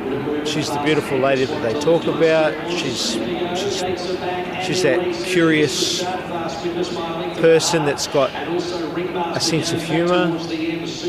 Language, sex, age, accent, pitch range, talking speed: English, male, 40-59, Australian, 160-180 Hz, 110 wpm